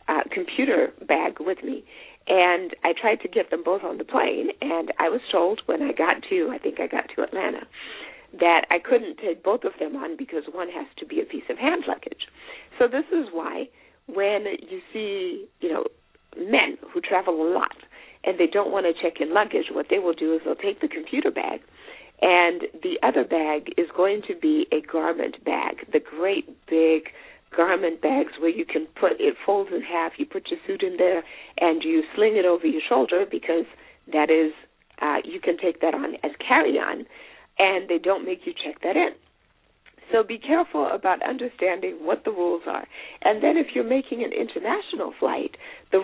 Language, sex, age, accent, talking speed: English, female, 50-69, American, 200 wpm